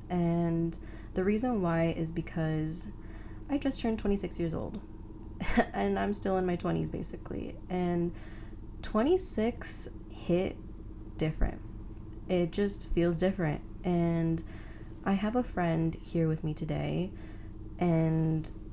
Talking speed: 120 wpm